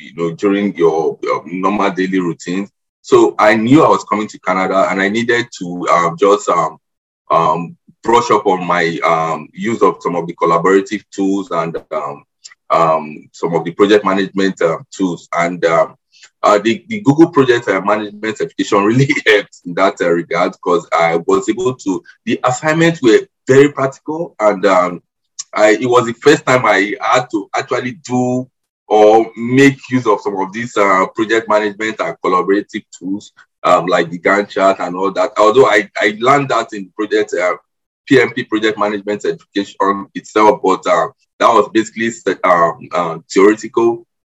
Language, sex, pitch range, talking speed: English, male, 95-125 Hz, 170 wpm